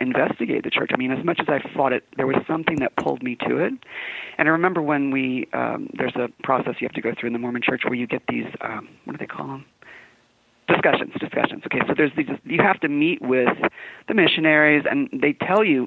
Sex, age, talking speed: male, 30-49, 240 wpm